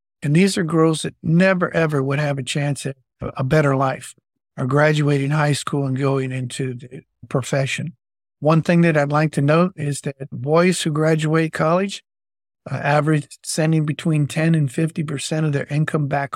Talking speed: 175 wpm